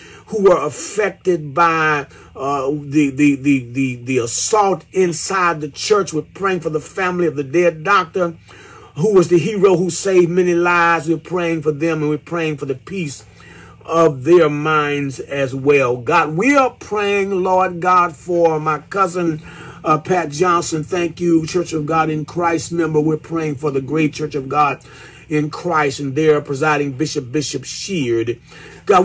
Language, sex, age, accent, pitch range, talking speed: English, male, 40-59, American, 150-180 Hz, 170 wpm